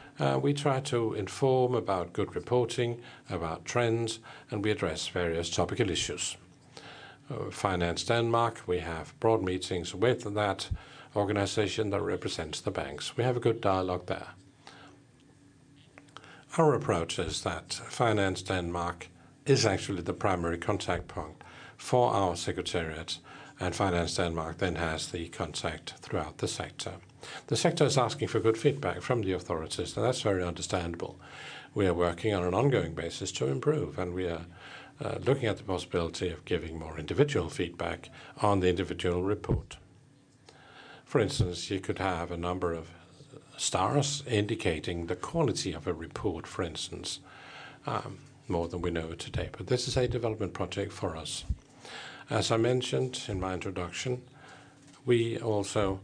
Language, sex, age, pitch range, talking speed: Danish, male, 50-69, 90-125 Hz, 150 wpm